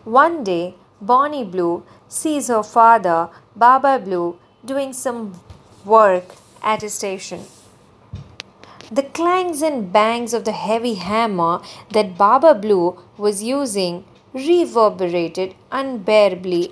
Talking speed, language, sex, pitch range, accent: 110 wpm, English, female, 190-260 Hz, Indian